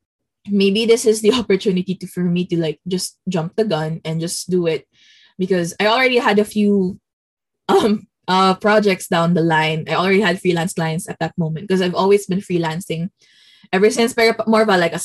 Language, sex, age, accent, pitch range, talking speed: Filipino, female, 20-39, native, 175-215 Hz, 200 wpm